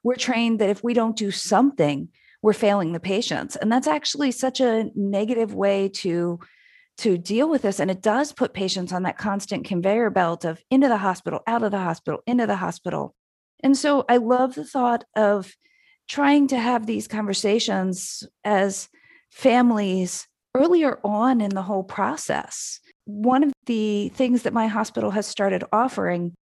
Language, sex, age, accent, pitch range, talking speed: English, female, 40-59, American, 200-250 Hz, 170 wpm